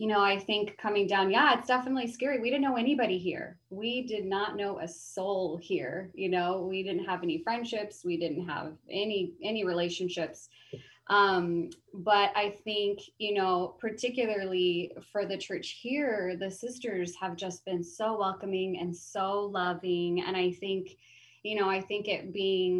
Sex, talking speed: female, 170 wpm